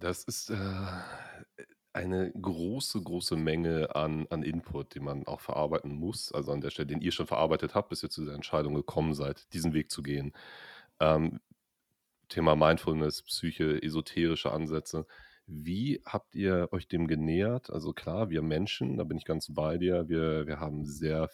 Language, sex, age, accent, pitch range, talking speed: German, male, 30-49, German, 75-90 Hz, 170 wpm